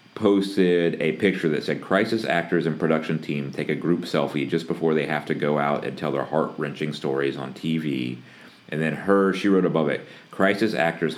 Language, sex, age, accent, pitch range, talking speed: English, male, 30-49, American, 75-95 Hz, 205 wpm